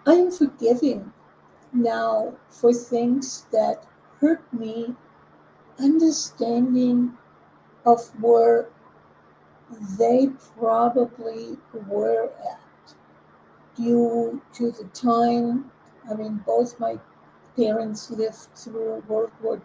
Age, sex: 50-69, female